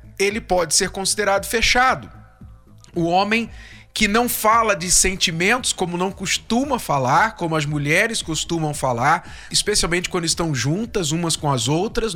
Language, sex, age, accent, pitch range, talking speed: Portuguese, male, 40-59, Brazilian, 145-205 Hz, 145 wpm